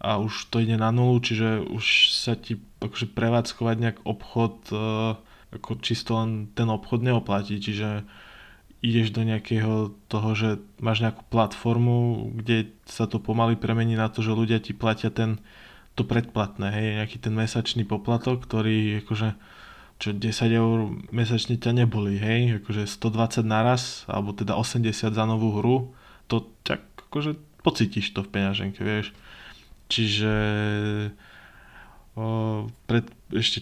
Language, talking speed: Slovak, 140 wpm